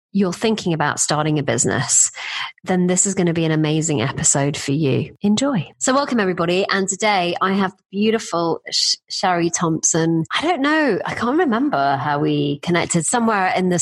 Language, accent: English, British